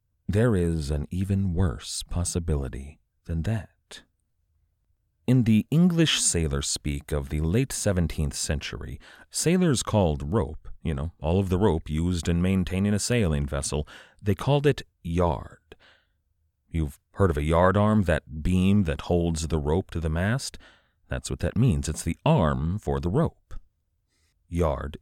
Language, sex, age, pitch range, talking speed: English, male, 40-59, 80-105 Hz, 150 wpm